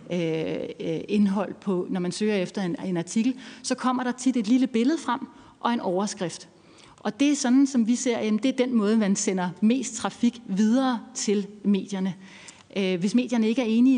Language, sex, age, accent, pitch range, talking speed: Danish, female, 30-49, native, 195-235 Hz, 190 wpm